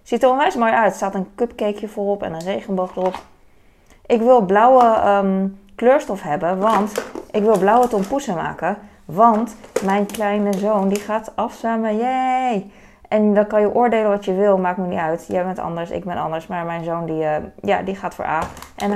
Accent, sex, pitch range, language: Dutch, female, 180-225 Hz, Dutch